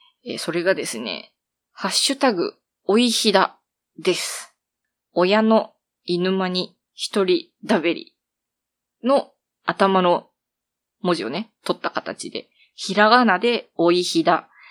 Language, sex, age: Japanese, female, 20-39